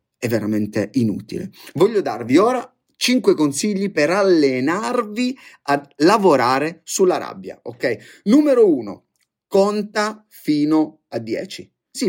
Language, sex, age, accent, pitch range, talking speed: Italian, male, 30-49, native, 130-195 Hz, 110 wpm